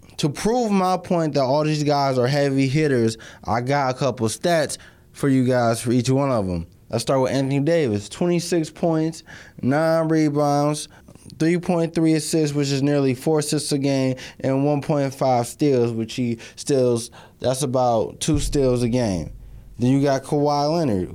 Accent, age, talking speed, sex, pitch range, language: American, 20-39, 180 wpm, male, 120-155 Hz, English